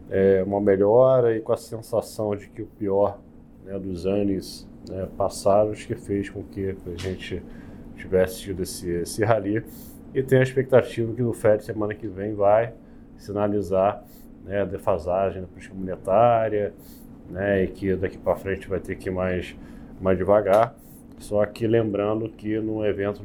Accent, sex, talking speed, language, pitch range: Brazilian, male, 165 wpm, Portuguese, 95-105 Hz